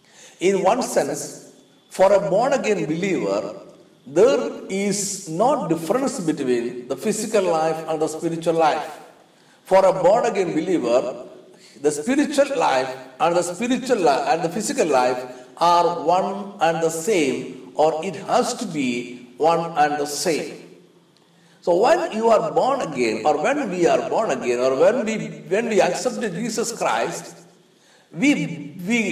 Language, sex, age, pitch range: Malayalam, male, 50-69, 160-235 Hz